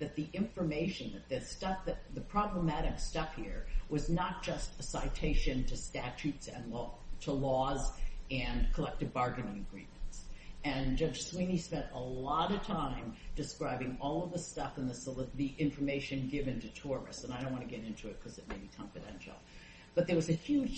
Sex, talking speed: female, 190 wpm